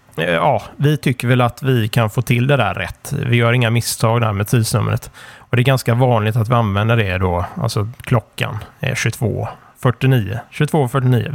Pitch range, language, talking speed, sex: 110-135 Hz, Swedish, 180 wpm, male